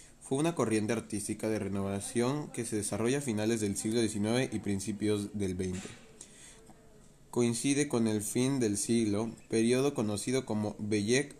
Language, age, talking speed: Spanish, 20-39, 145 wpm